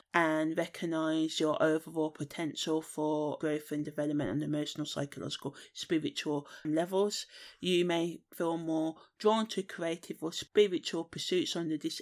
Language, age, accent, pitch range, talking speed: English, 30-49, British, 160-190 Hz, 130 wpm